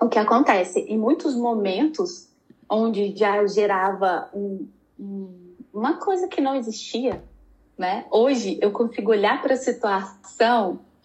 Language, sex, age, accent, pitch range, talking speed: Portuguese, female, 10-29, Brazilian, 210-265 Hz, 130 wpm